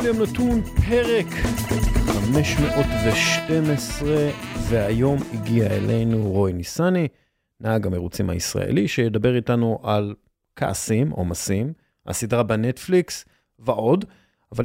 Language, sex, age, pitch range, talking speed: Hebrew, male, 40-59, 110-155 Hz, 85 wpm